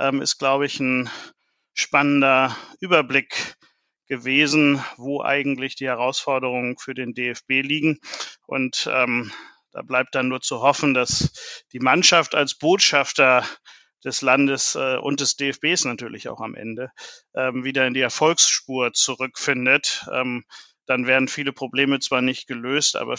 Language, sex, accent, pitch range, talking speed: German, male, German, 125-145 Hz, 135 wpm